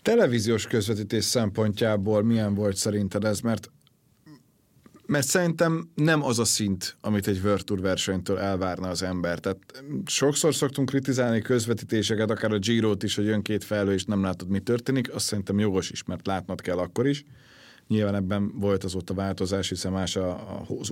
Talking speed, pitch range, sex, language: 165 wpm, 100-135 Hz, male, Hungarian